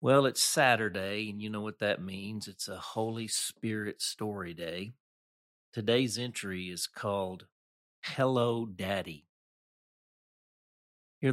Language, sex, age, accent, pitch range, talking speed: English, male, 50-69, American, 95-120 Hz, 115 wpm